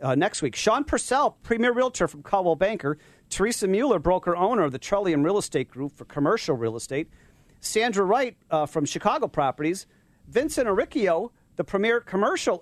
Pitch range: 145-195 Hz